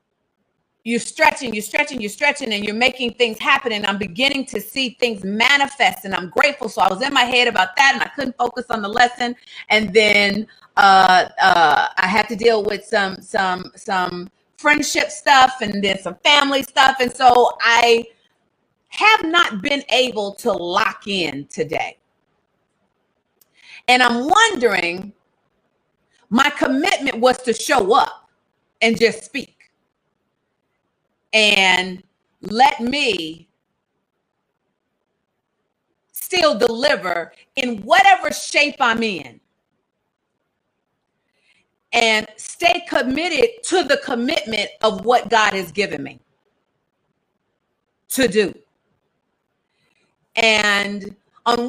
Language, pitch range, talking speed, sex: English, 210-275 Hz, 120 wpm, female